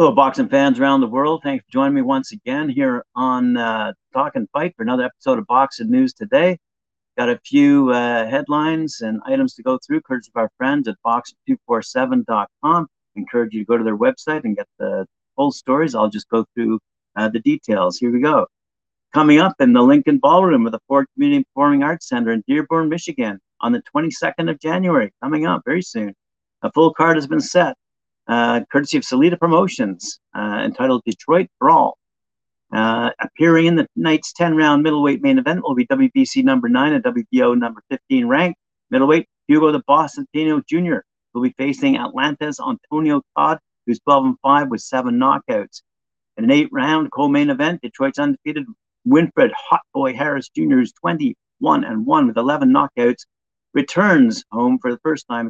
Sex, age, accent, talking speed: male, 50-69, American, 180 wpm